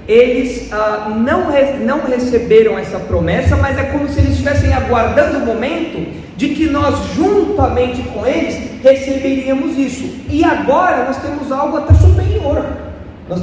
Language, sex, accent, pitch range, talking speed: Portuguese, male, Brazilian, 205-285 Hz, 145 wpm